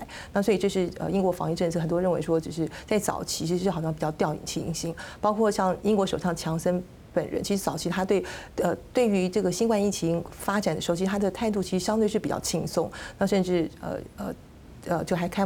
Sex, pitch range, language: female, 170-205 Hz, Chinese